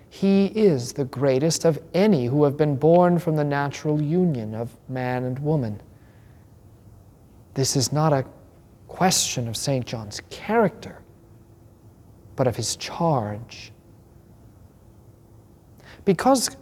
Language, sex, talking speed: English, male, 115 wpm